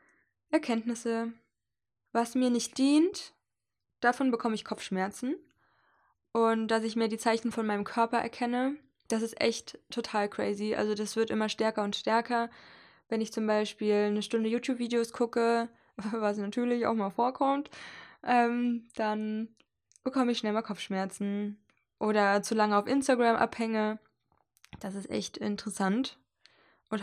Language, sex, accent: German, female, German